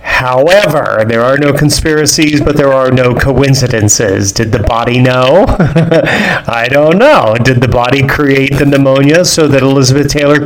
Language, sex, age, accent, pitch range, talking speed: English, male, 30-49, American, 115-135 Hz, 155 wpm